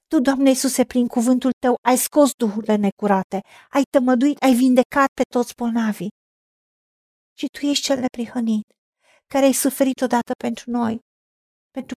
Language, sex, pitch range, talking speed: Romanian, female, 235-280 Hz, 145 wpm